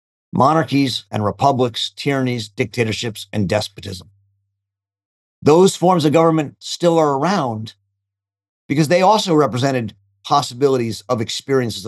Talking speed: 105 wpm